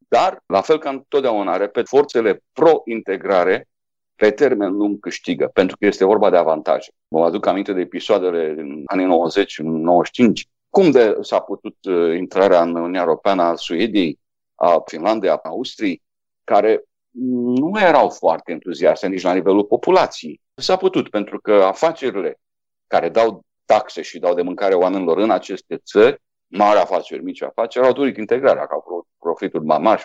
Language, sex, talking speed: Romanian, male, 155 wpm